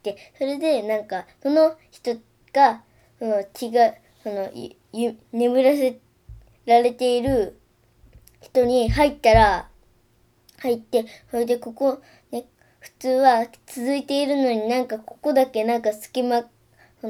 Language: Japanese